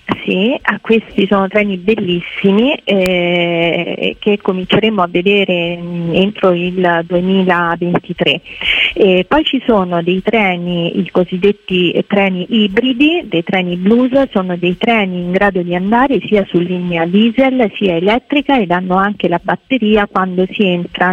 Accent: native